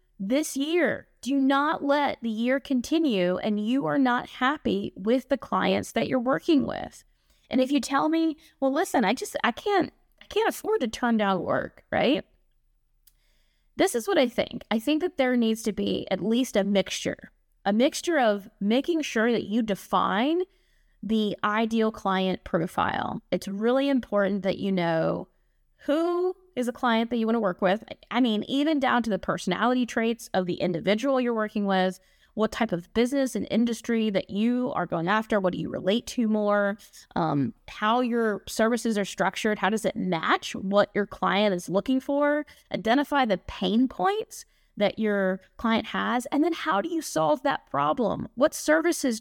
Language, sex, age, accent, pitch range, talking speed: English, female, 20-39, American, 205-280 Hz, 180 wpm